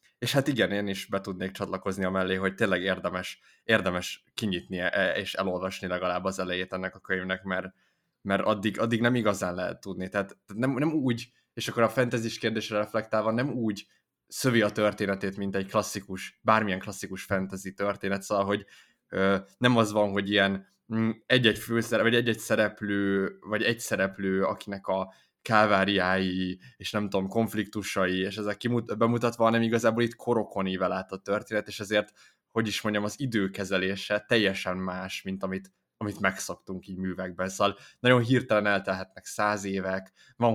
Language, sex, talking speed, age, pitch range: Hungarian, male, 160 wpm, 20-39, 95-110 Hz